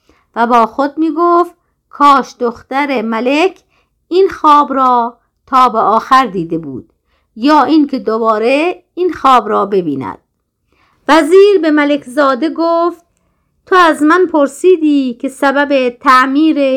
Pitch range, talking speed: 240-310 Hz, 120 wpm